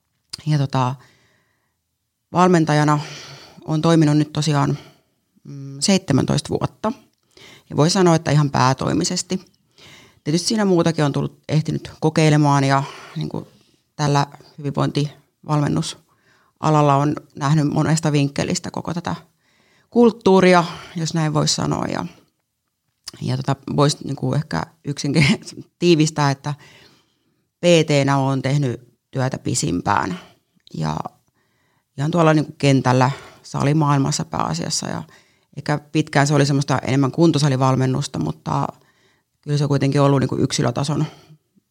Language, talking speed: Finnish, 110 wpm